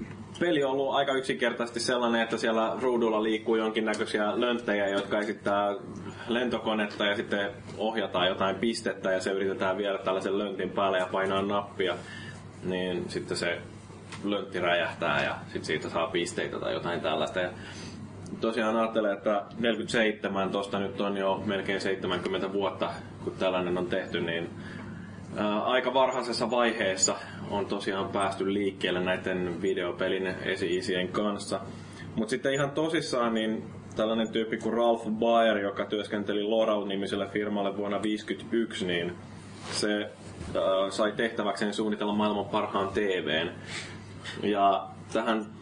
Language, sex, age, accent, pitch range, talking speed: Finnish, male, 20-39, native, 95-110 Hz, 130 wpm